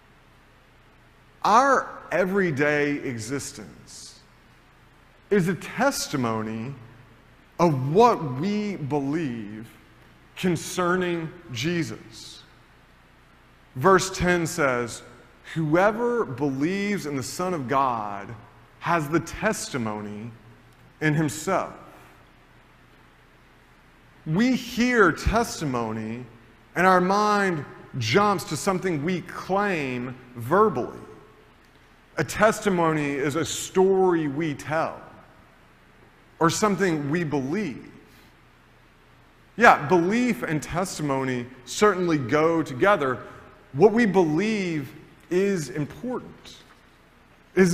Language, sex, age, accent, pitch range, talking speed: English, male, 40-59, American, 135-190 Hz, 80 wpm